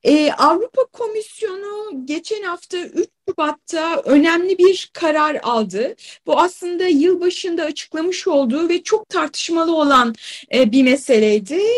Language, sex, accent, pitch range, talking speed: Turkish, female, native, 270-365 Hz, 115 wpm